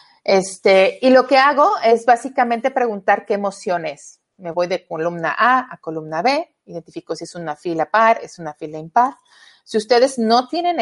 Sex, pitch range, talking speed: female, 175-235 Hz, 175 wpm